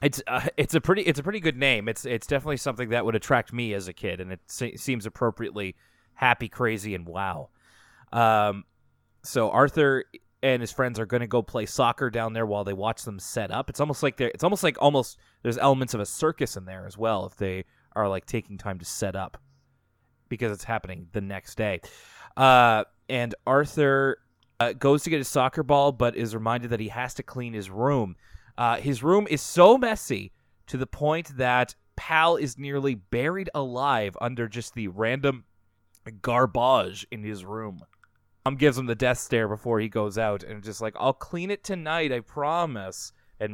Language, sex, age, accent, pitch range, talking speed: English, male, 20-39, American, 105-140 Hz, 200 wpm